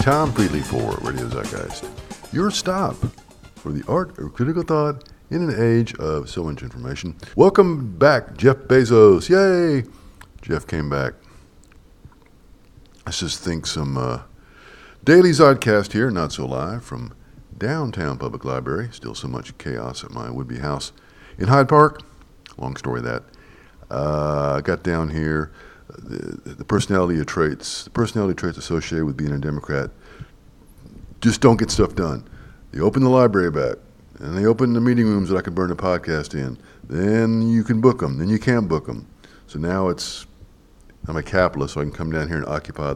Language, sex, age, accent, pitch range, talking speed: English, male, 60-79, American, 75-120 Hz, 170 wpm